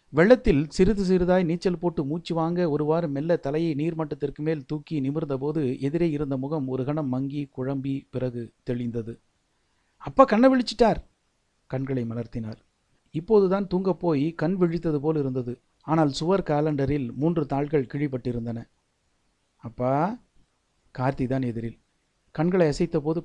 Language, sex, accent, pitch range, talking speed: Tamil, male, native, 125-165 Hz, 120 wpm